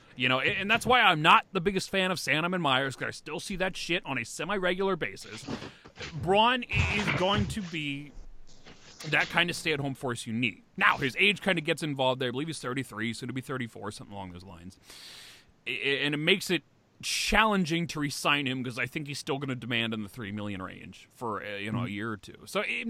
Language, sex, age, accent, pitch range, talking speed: English, male, 30-49, American, 130-200 Hz, 225 wpm